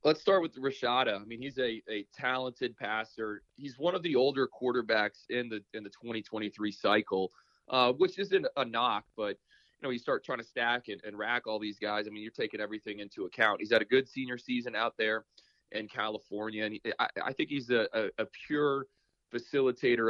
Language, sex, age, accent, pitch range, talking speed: English, male, 20-39, American, 105-125 Hz, 205 wpm